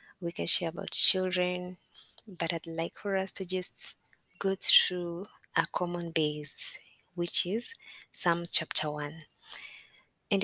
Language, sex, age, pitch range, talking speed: Swahili, female, 20-39, 160-185 Hz, 130 wpm